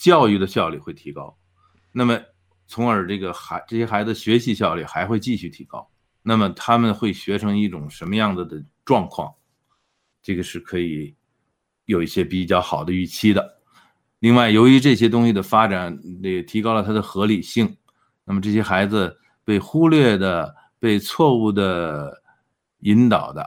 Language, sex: Chinese, male